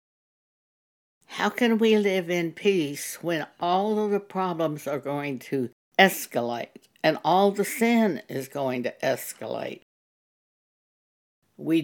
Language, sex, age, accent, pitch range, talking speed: English, female, 60-79, American, 140-195 Hz, 120 wpm